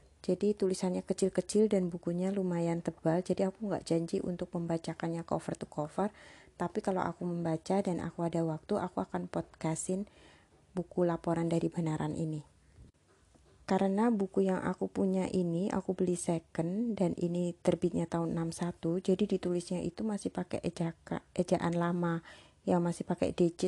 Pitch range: 155-185 Hz